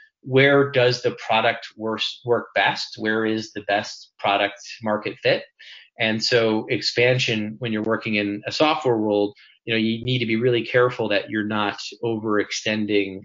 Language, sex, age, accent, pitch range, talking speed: English, male, 30-49, American, 105-120 Hz, 165 wpm